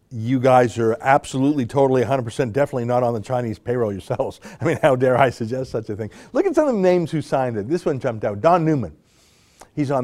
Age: 50-69